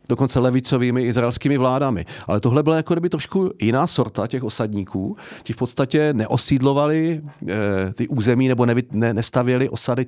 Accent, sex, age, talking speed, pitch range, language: Czech, male, 40-59, 150 wpm, 105-125 Hz, English